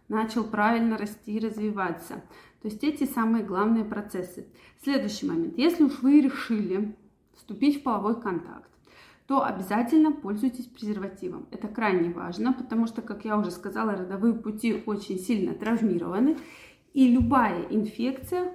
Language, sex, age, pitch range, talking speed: Russian, female, 20-39, 205-265 Hz, 135 wpm